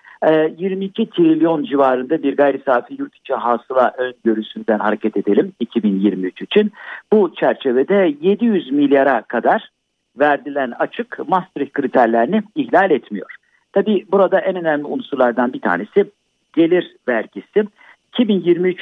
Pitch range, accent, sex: 125-195 Hz, native, male